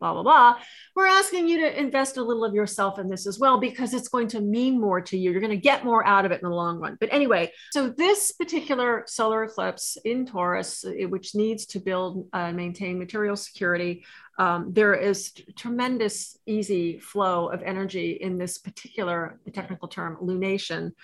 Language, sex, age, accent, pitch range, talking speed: English, female, 40-59, American, 185-235 Hz, 190 wpm